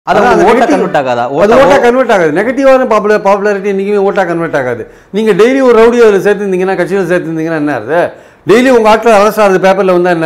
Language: Tamil